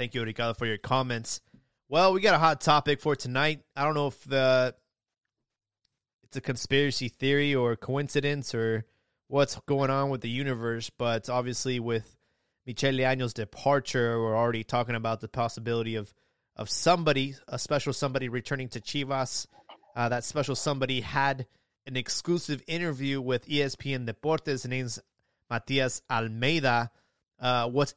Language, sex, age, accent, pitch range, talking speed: English, male, 20-39, American, 115-140 Hz, 150 wpm